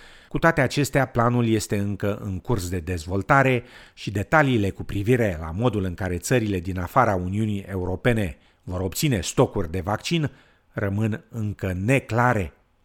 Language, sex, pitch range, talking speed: Romanian, male, 100-130 Hz, 145 wpm